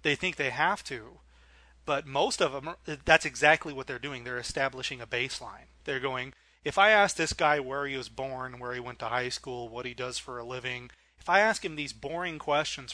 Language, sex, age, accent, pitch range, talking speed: English, male, 30-49, American, 125-150 Hz, 225 wpm